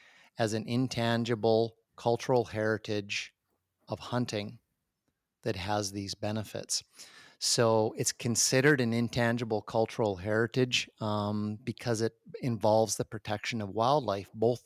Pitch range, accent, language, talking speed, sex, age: 105-120 Hz, American, English, 110 wpm, male, 30-49